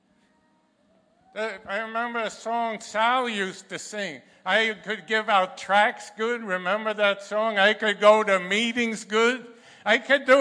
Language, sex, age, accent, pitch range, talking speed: English, male, 50-69, American, 215-245 Hz, 150 wpm